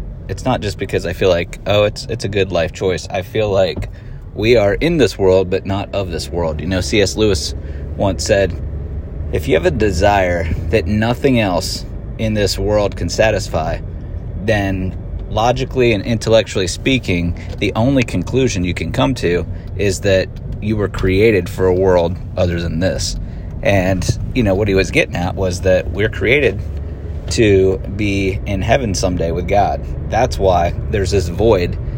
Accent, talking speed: American, 175 wpm